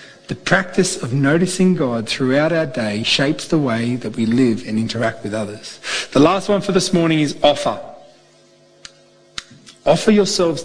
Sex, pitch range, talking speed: male, 125-170 Hz, 160 wpm